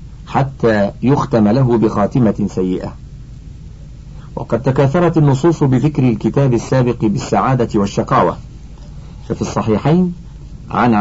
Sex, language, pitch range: male, Arabic, 105-140 Hz